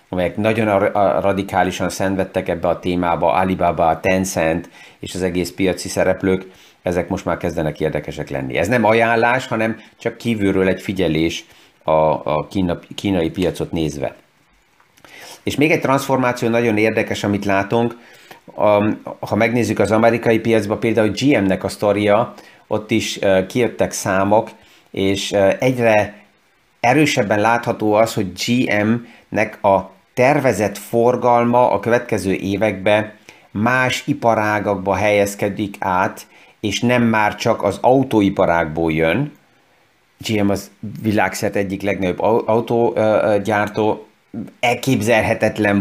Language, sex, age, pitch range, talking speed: Hungarian, male, 30-49, 95-115 Hz, 110 wpm